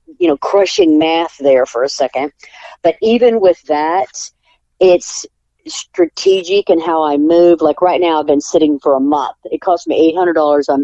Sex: female